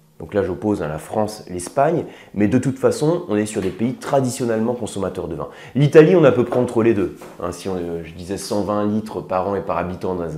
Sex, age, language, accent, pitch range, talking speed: male, 30-49, French, French, 95-125 Hz, 230 wpm